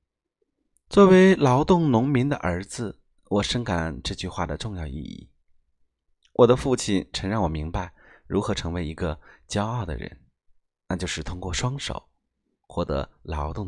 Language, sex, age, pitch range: Chinese, male, 30-49, 75-110 Hz